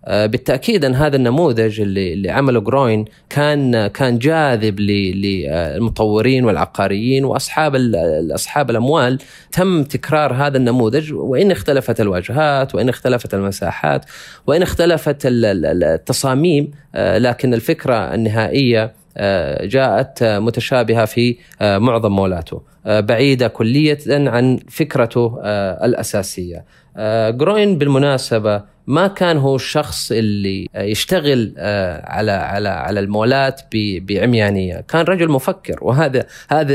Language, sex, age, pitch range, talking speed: Arabic, male, 30-49, 105-135 Hz, 95 wpm